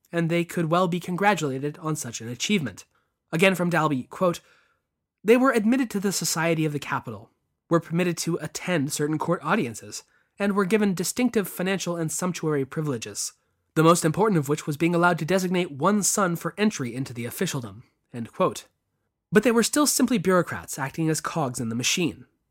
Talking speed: 185 wpm